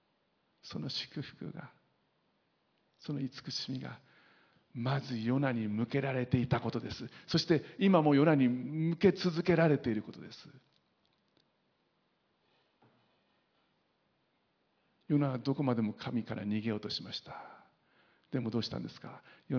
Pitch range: 125-160 Hz